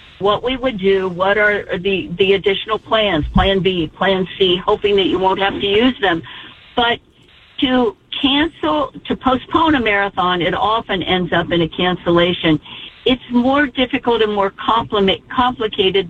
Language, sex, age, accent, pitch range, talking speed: English, female, 50-69, American, 190-245 Hz, 155 wpm